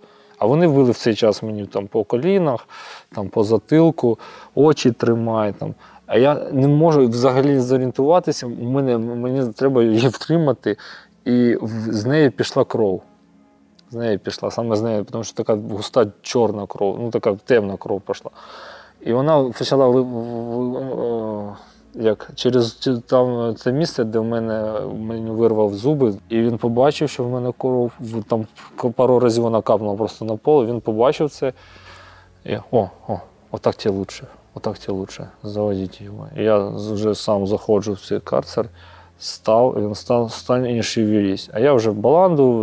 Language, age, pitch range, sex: Russian, 20-39, 105-125 Hz, male